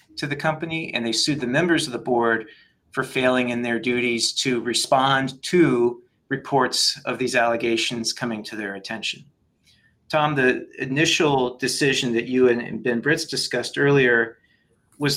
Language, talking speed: English, 155 wpm